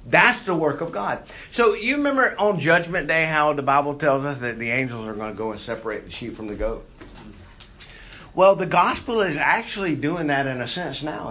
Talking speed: 220 wpm